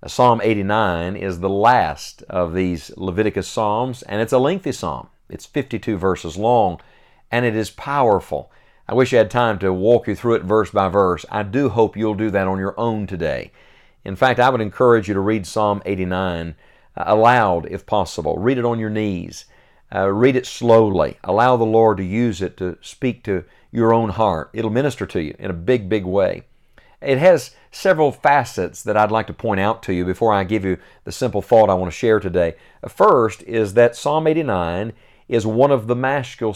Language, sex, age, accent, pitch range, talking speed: English, male, 50-69, American, 95-120 Hz, 200 wpm